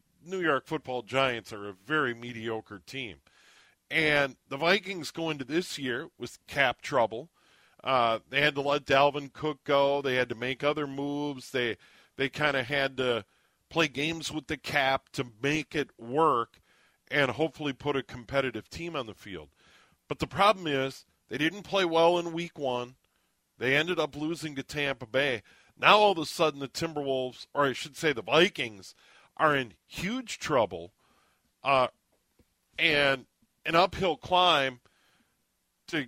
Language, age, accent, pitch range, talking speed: English, 40-59, American, 130-160 Hz, 165 wpm